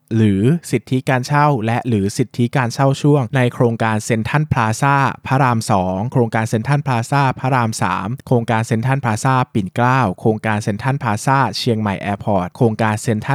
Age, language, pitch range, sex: 20-39, Thai, 110-140 Hz, male